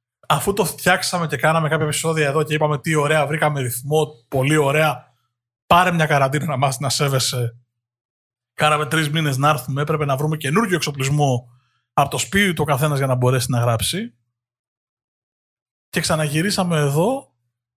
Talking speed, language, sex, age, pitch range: 160 wpm, Greek, male, 20-39, 125-155 Hz